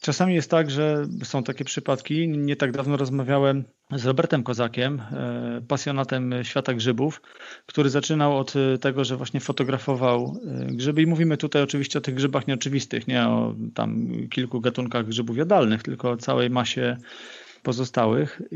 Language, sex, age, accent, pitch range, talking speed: Polish, male, 40-59, native, 125-140 Hz, 145 wpm